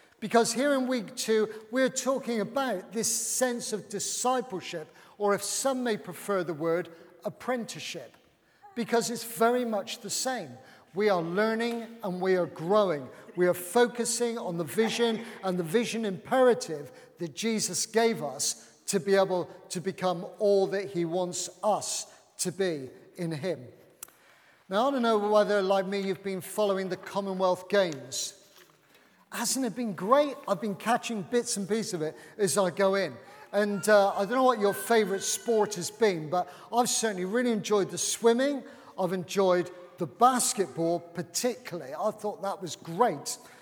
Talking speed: 160 wpm